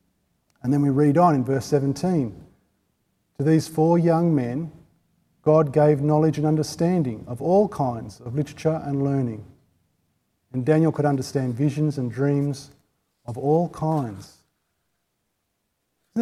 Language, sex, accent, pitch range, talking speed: English, male, Australian, 125-155 Hz, 135 wpm